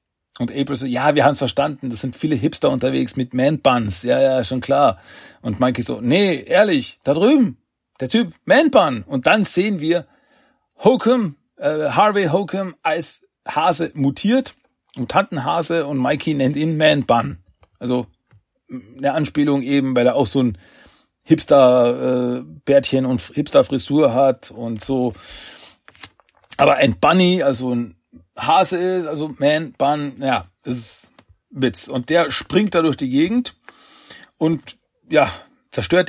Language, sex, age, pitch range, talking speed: German, male, 40-59, 125-175 Hz, 150 wpm